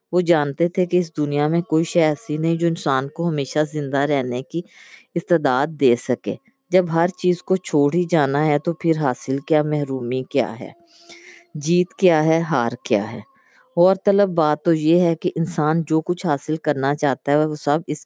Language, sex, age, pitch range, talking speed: Urdu, female, 20-39, 145-170 Hz, 195 wpm